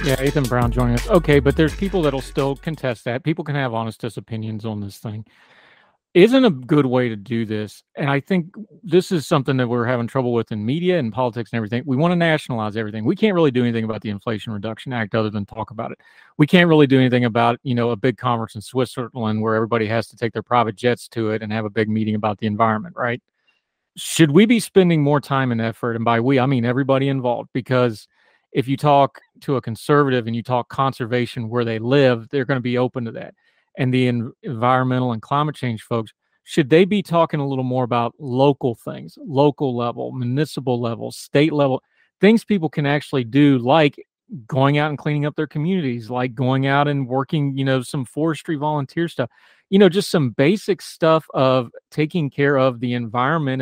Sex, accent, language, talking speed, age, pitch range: male, American, English, 215 wpm, 40-59, 120-145 Hz